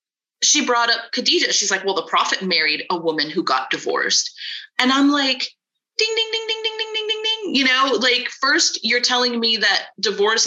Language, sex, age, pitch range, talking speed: English, female, 30-49, 205-310 Hz, 205 wpm